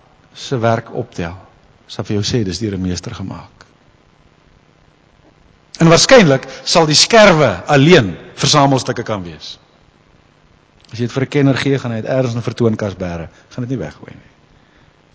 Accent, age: Dutch, 50-69